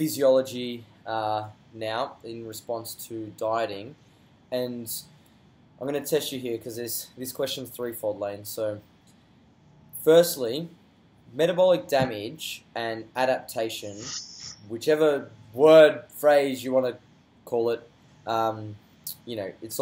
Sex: male